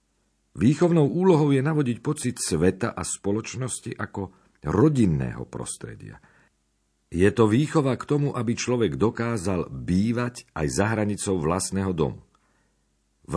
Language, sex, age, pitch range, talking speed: Slovak, male, 50-69, 75-115 Hz, 115 wpm